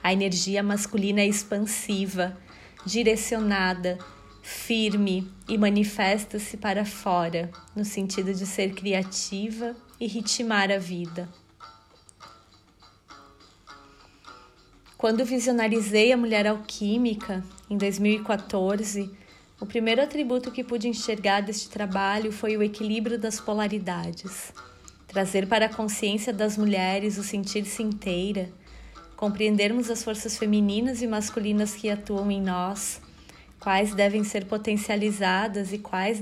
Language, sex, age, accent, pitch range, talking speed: Portuguese, female, 30-49, Brazilian, 195-215 Hz, 110 wpm